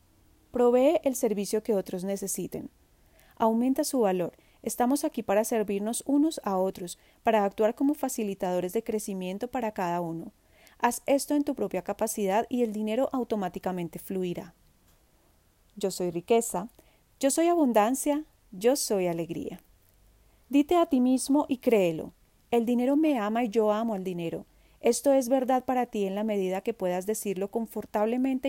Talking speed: 150 wpm